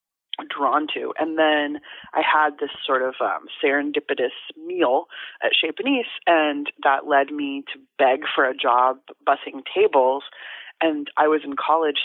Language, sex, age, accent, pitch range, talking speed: English, female, 30-49, American, 140-210 Hz, 155 wpm